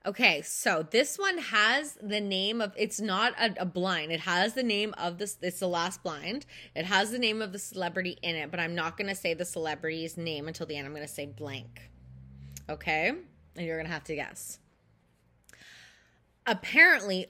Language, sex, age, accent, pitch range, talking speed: English, female, 20-39, American, 185-240 Hz, 200 wpm